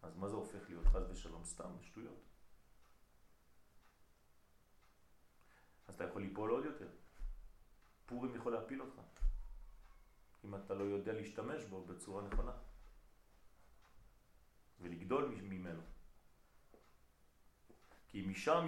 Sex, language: male, French